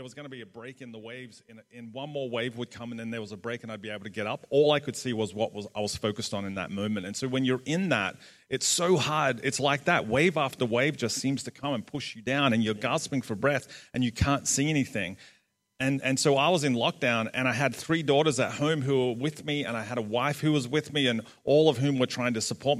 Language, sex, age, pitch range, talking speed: English, male, 30-49, 110-135 Hz, 295 wpm